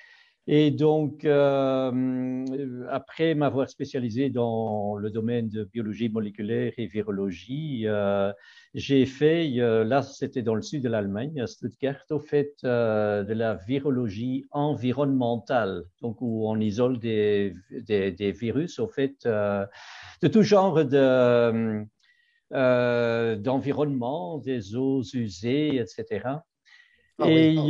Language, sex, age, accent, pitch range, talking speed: French, male, 50-69, French, 115-150 Hz, 120 wpm